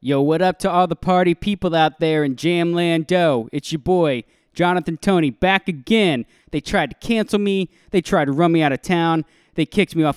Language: English